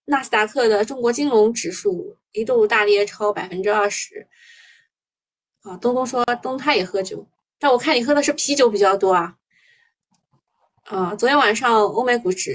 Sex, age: female, 20-39